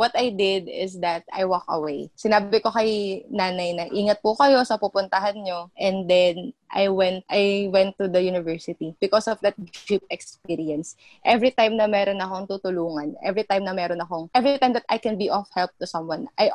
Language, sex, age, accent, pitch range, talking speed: Filipino, female, 20-39, native, 180-215 Hz, 200 wpm